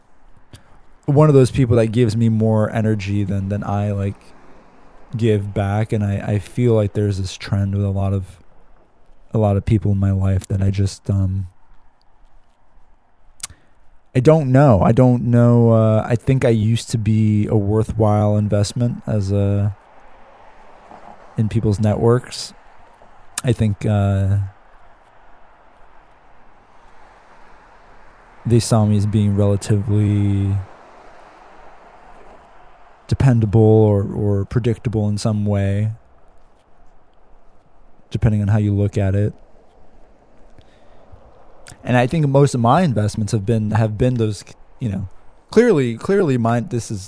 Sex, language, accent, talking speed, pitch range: male, English, American, 130 wpm, 100-120 Hz